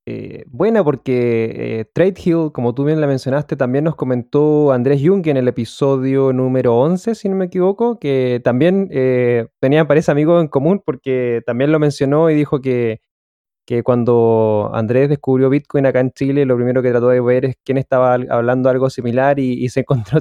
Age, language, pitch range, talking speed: 20-39, Spanish, 120-145 Hz, 190 wpm